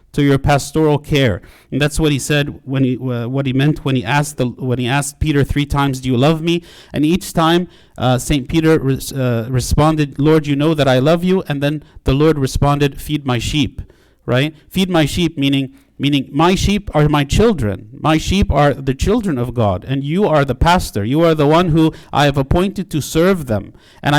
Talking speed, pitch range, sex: 215 wpm, 135-165 Hz, male